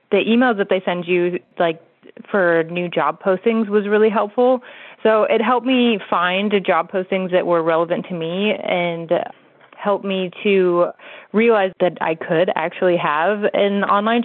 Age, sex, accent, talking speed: 20-39, female, American, 160 wpm